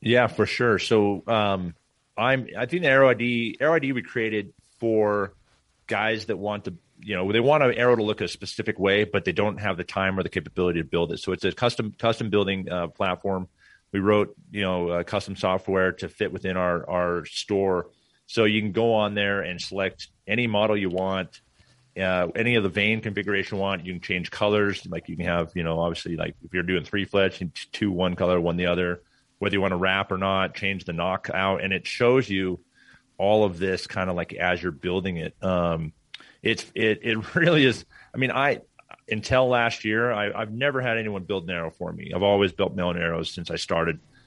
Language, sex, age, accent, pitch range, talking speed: English, male, 30-49, American, 90-105 Hz, 220 wpm